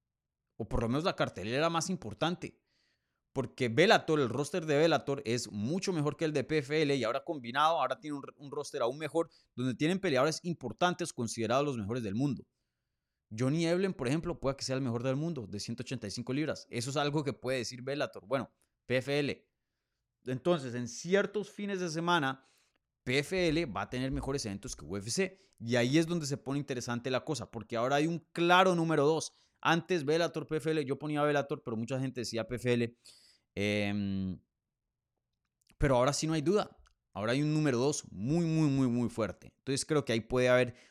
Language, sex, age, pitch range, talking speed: Spanish, male, 30-49, 120-155 Hz, 185 wpm